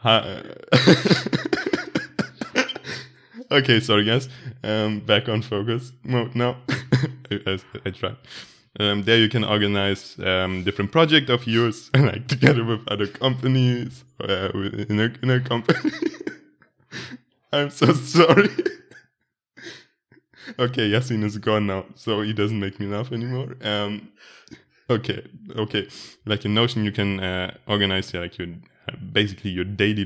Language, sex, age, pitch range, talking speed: English, male, 20-39, 95-120 Hz, 130 wpm